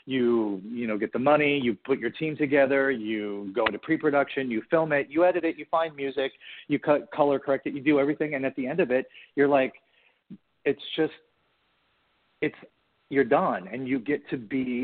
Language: English